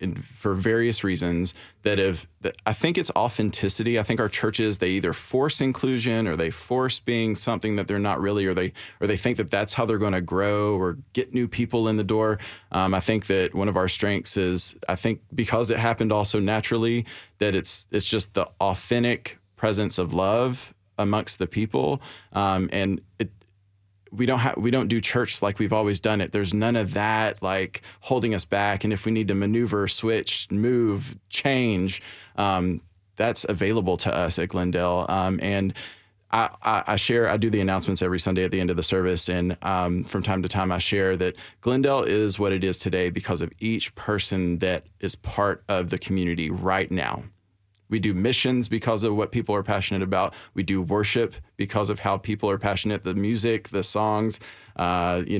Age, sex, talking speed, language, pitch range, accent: 20-39, male, 200 wpm, English, 95-115 Hz, American